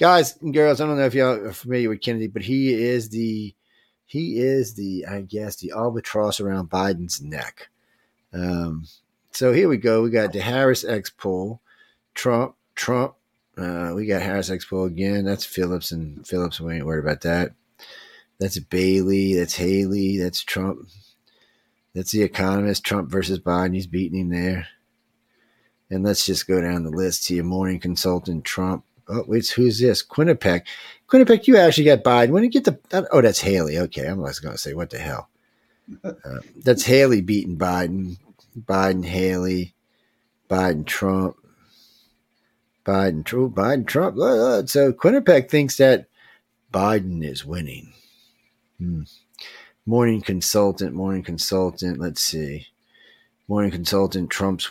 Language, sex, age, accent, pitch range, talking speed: English, male, 40-59, American, 90-115 Hz, 150 wpm